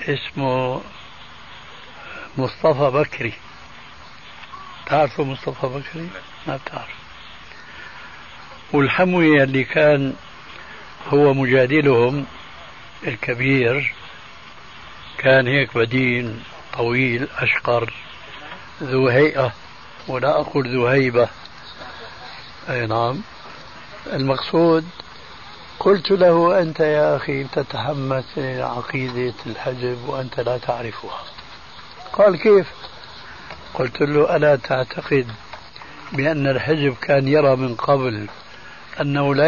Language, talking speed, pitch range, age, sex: Arabic, 80 wpm, 125-160 Hz, 60-79, male